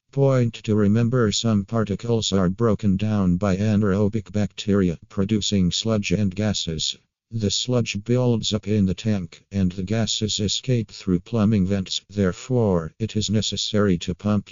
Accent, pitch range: American, 95-110 Hz